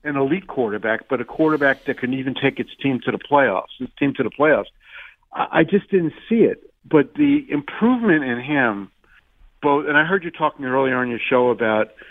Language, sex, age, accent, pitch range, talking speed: English, male, 50-69, American, 120-145 Hz, 205 wpm